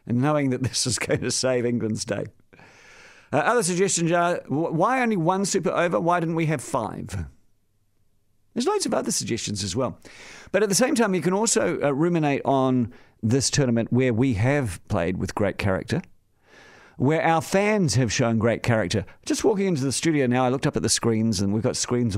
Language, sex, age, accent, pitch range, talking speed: English, male, 50-69, British, 105-165 Hz, 195 wpm